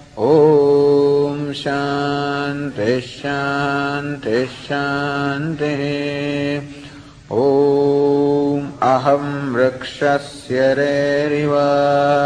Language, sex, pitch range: English, male, 140-145 Hz